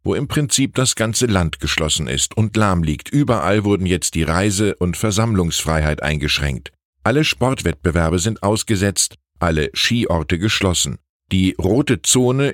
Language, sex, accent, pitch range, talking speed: German, male, German, 85-120 Hz, 140 wpm